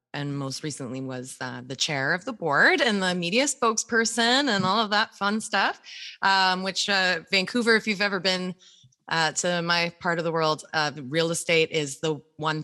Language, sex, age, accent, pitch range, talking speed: English, female, 20-39, American, 140-185 Hz, 200 wpm